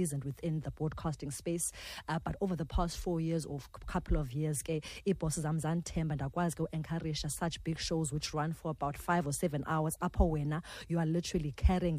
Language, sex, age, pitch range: English, female, 30-49, 150-170 Hz